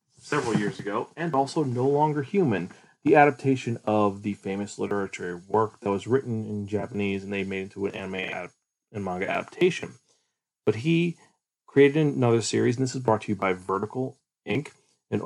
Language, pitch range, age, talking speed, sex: English, 105-140 Hz, 30-49, 180 wpm, male